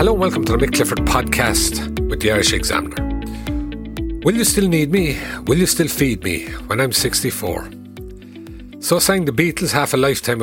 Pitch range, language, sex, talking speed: 110-155 Hz, English, male, 180 wpm